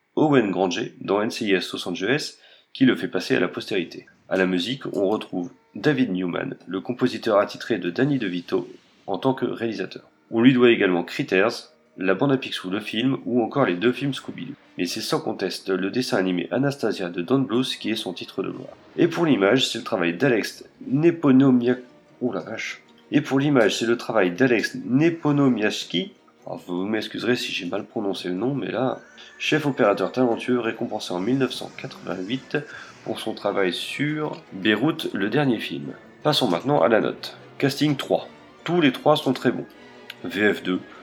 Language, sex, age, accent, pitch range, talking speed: French, male, 30-49, French, 95-135 Hz, 175 wpm